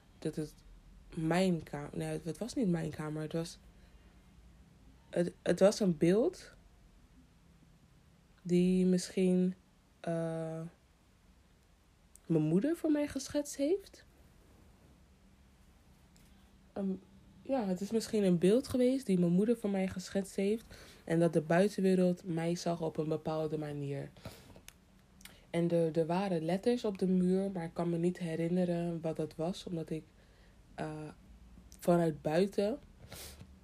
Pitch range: 155-185 Hz